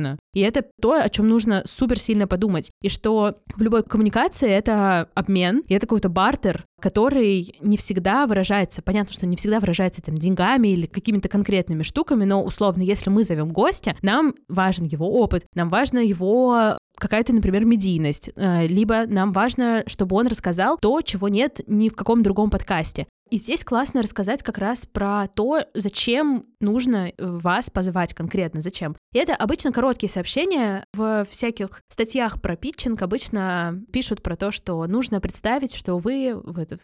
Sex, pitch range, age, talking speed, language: female, 185-235 Hz, 20-39, 160 wpm, Russian